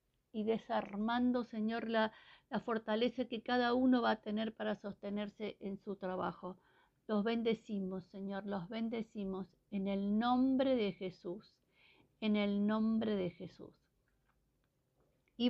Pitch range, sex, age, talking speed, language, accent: 195-250 Hz, female, 50-69, 130 wpm, Spanish, American